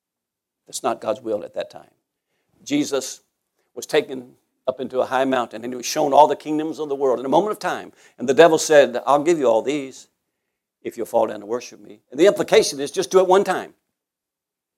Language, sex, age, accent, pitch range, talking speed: English, male, 60-79, American, 115-145 Hz, 225 wpm